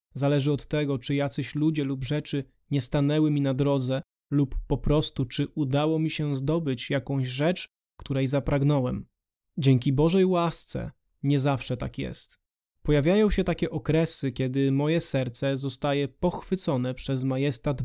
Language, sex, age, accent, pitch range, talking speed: Polish, male, 20-39, native, 135-160 Hz, 145 wpm